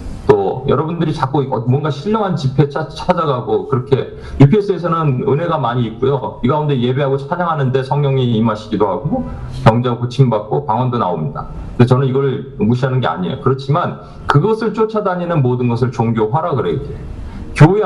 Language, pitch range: Korean, 125-170 Hz